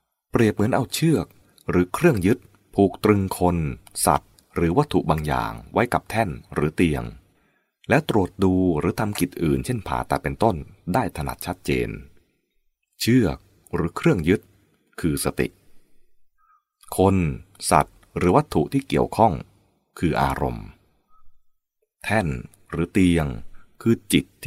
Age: 30-49